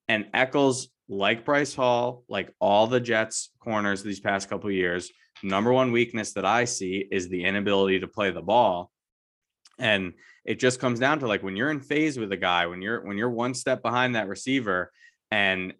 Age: 20-39